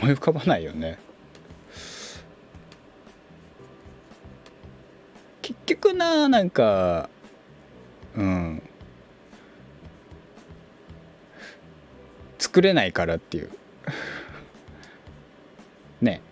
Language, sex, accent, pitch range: Japanese, male, native, 80-125 Hz